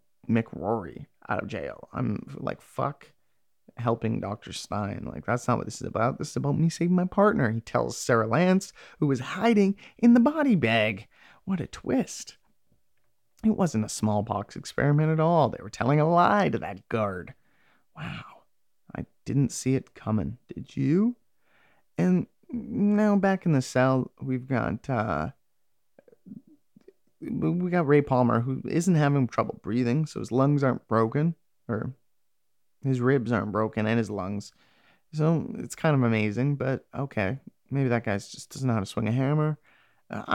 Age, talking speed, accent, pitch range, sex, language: 30-49, 165 wpm, American, 120-185 Hz, male, English